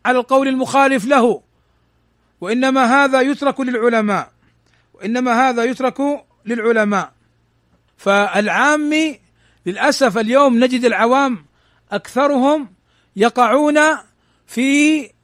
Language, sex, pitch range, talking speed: Arabic, male, 215-255 Hz, 80 wpm